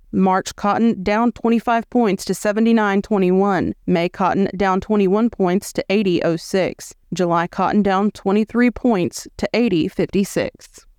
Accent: American